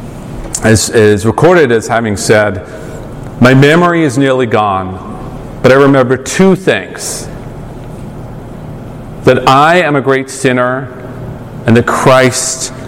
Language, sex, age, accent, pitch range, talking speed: English, male, 40-59, American, 125-175 Hz, 110 wpm